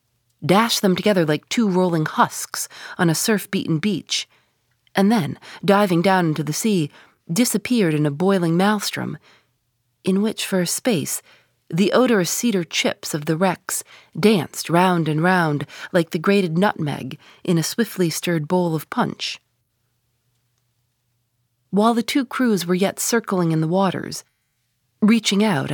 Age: 30-49